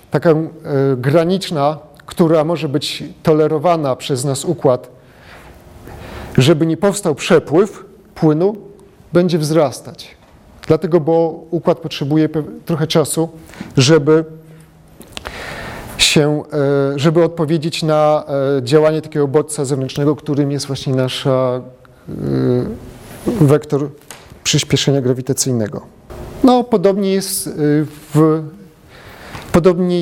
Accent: native